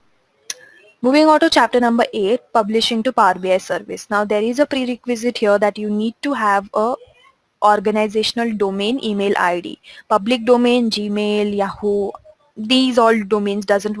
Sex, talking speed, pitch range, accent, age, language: female, 150 wpm, 205-245 Hz, Indian, 20-39, English